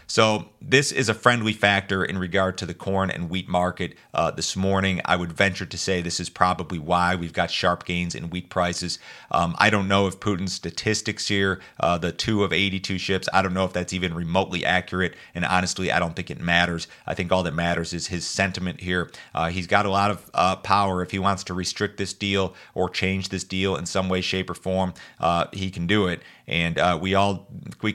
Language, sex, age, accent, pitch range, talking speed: English, male, 30-49, American, 90-100 Hz, 230 wpm